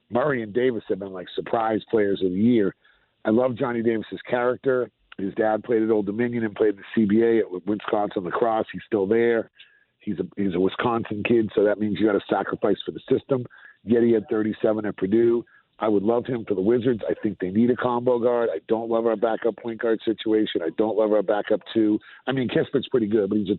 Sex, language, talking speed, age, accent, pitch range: male, English, 230 wpm, 50-69, American, 105-130 Hz